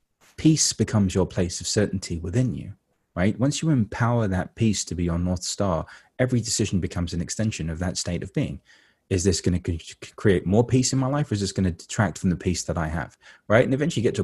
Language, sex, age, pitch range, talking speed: English, male, 30-49, 90-110 Hz, 230 wpm